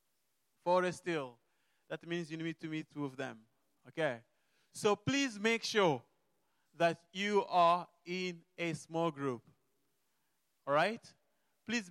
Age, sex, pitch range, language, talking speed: 20-39, male, 150-195 Hz, English, 125 wpm